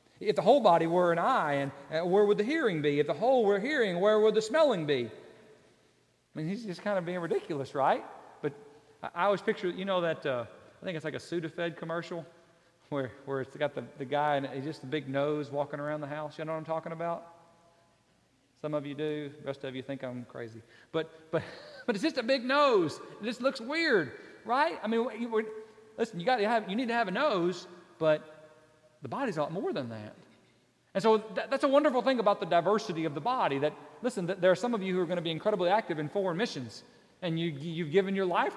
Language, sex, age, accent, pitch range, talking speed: English, male, 40-59, American, 155-225 Hz, 240 wpm